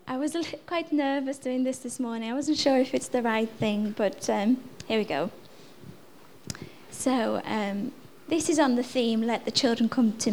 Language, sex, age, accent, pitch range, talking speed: English, female, 20-39, British, 210-255 Hz, 190 wpm